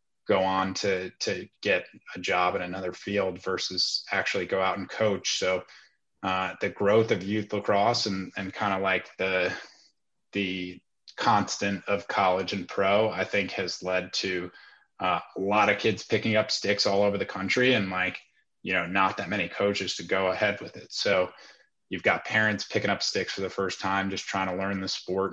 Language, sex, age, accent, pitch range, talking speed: English, male, 20-39, American, 95-100 Hz, 195 wpm